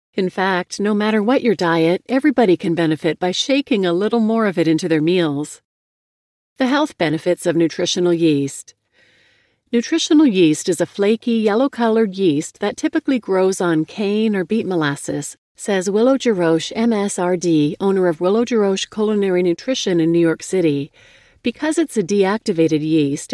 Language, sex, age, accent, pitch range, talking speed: English, female, 40-59, American, 170-225 Hz, 155 wpm